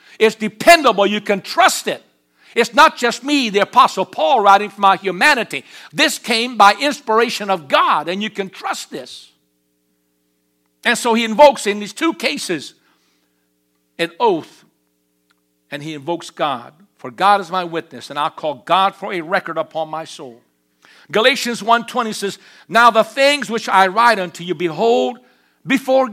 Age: 60-79